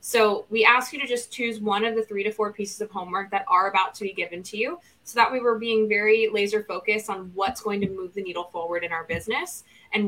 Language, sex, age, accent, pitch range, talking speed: English, female, 20-39, American, 190-230 Hz, 260 wpm